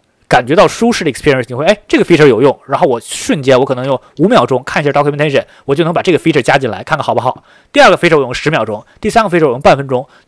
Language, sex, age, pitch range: Chinese, male, 20-39, 130-170 Hz